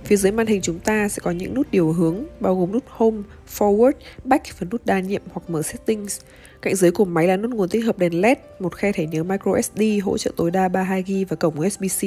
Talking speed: 245 wpm